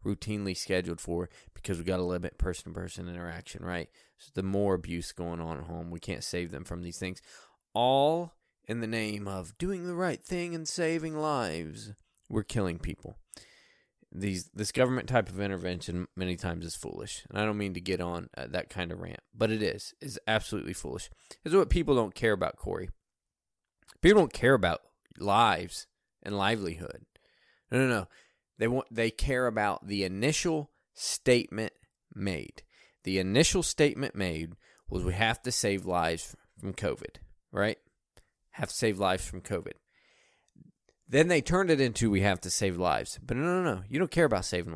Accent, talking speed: American, 180 wpm